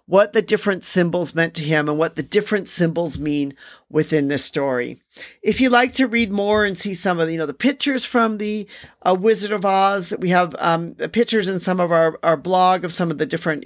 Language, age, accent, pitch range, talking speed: English, 40-59, American, 155-205 Hz, 235 wpm